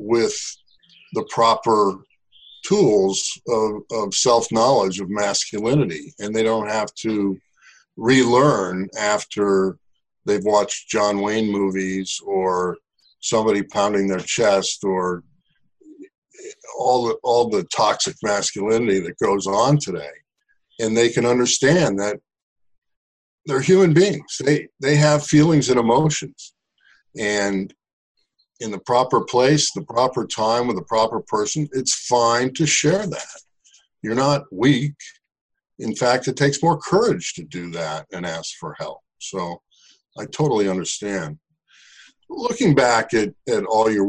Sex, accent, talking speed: male, American, 125 wpm